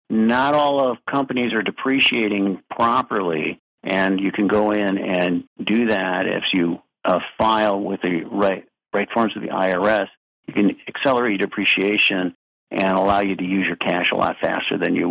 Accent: American